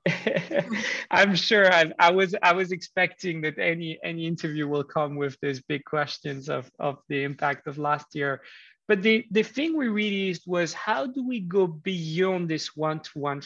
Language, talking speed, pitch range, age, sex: English, 170 wpm, 150-180 Hz, 30-49, male